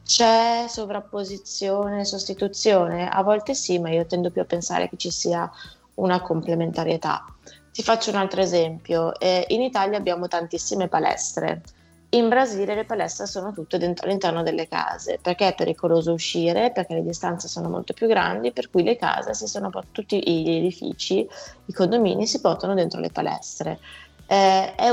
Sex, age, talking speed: female, 20-39, 160 wpm